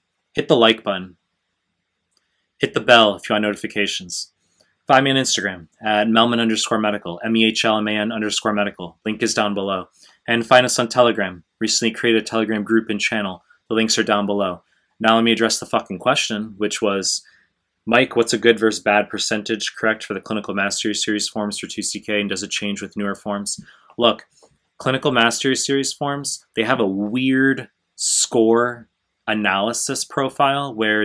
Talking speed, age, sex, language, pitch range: 170 wpm, 20-39, male, English, 105-120 Hz